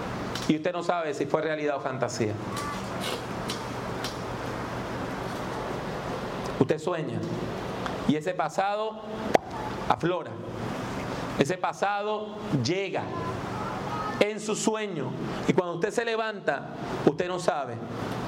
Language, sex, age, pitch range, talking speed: English, male, 40-59, 120-190 Hz, 95 wpm